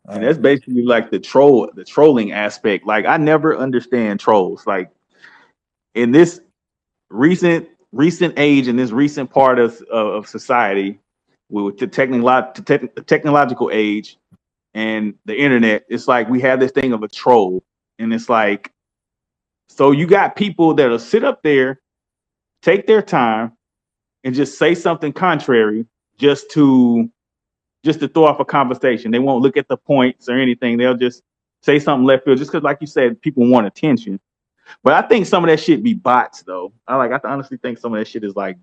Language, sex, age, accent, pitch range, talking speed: English, male, 30-49, American, 110-140 Hz, 180 wpm